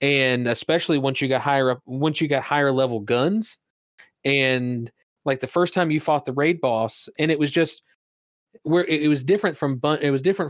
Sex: male